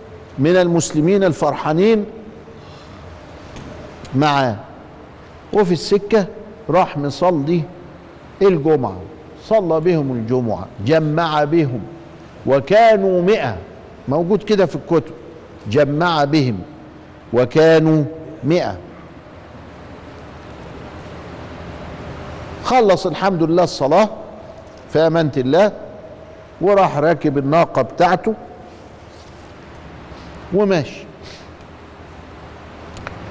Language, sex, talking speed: Arabic, male, 65 wpm